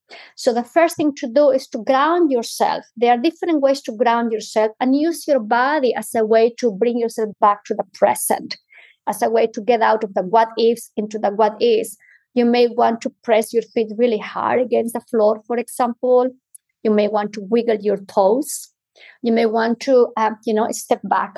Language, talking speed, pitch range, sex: English, 210 wpm, 225-280 Hz, female